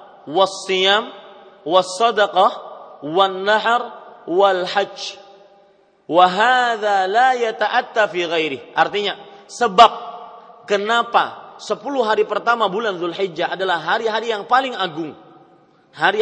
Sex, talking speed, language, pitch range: male, 85 wpm, Malay, 200-240 Hz